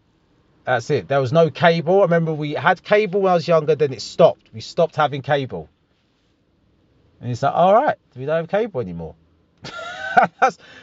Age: 30-49